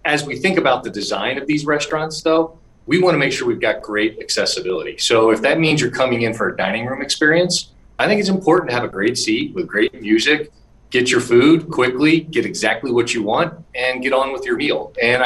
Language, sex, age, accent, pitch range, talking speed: English, male, 40-59, American, 115-170 Hz, 230 wpm